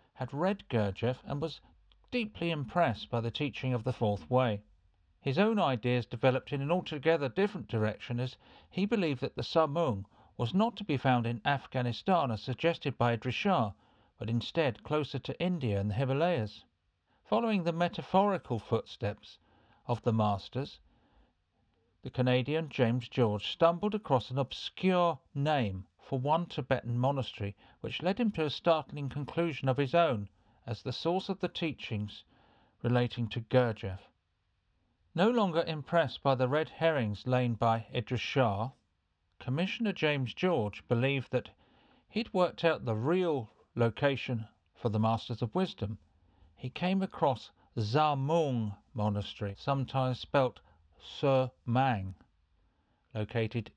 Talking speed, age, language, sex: 135 wpm, 50-69, English, male